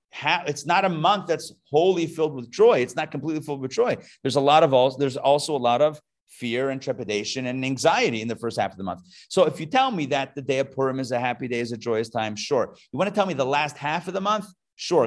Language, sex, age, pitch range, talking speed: English, male, 30-49, 130-180 Hz, 275 wpm